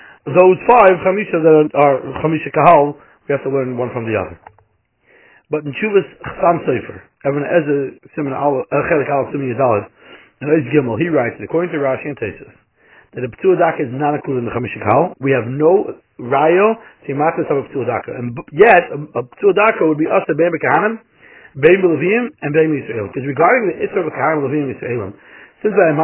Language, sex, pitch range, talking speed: English, male, 130-170 Hz, 190 wpm